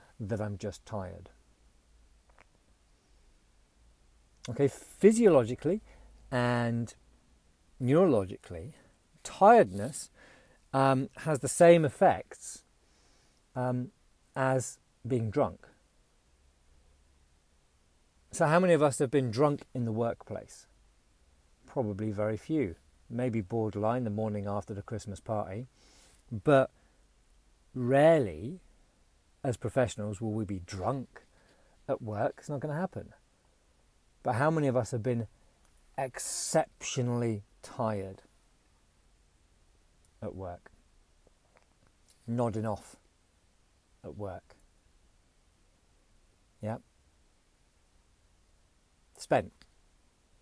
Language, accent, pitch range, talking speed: English, British, 80-120 Hz, 85 wpm